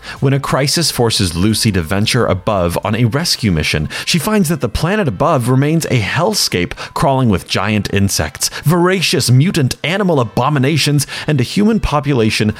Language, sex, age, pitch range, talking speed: English, male, 30-49, 105-150 Hz, 155 wpm